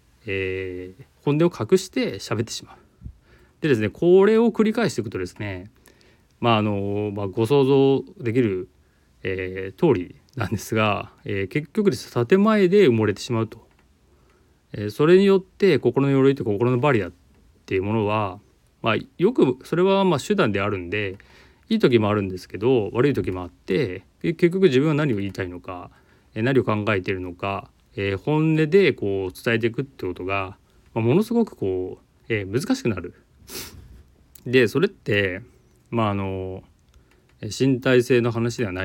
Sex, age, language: male, 30-49, Japanese